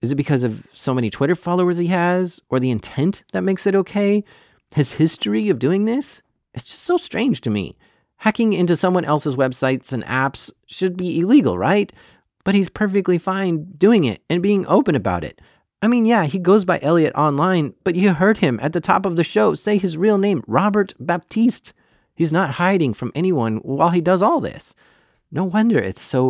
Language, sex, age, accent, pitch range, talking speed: English, male, 30-49, American, 125-185 Hz, 200 wpm